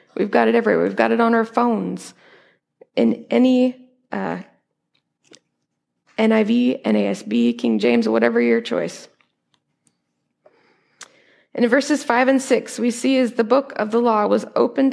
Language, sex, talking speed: English, female, 145 wpm